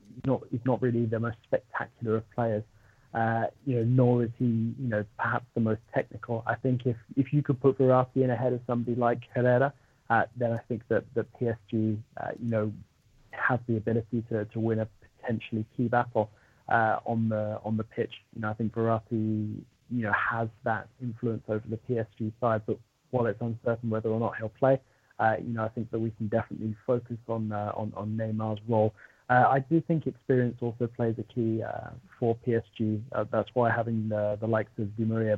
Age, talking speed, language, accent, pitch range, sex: 30-49, 205 wpm, English, British, 110-120 Hz, male